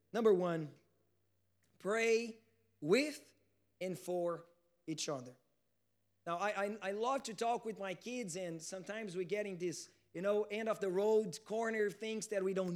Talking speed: 150 wpm